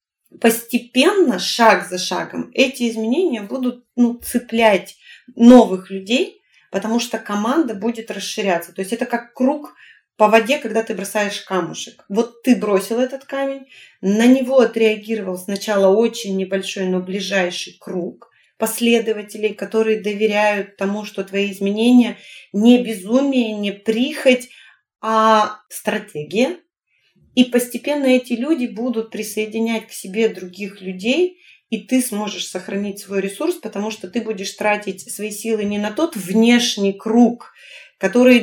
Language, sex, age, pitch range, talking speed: Russian, female, 30-49, 200-240 Hz, 130 wpm